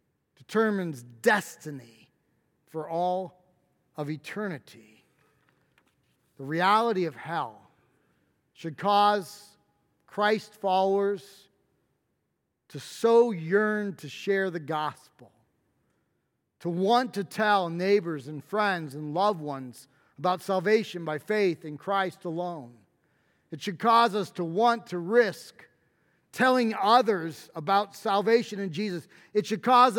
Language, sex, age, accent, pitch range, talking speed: English, male, 40-59, American, 160-210 Hz, 110 wpm